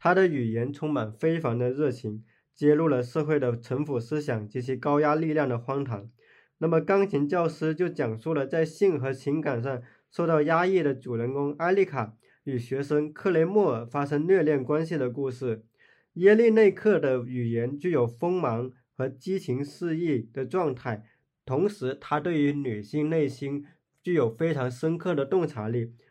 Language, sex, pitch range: Chinese, male, 125-170 Hz